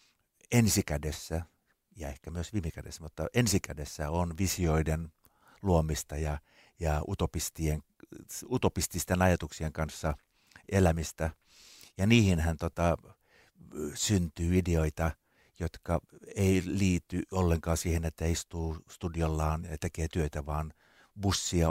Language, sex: Finnish, male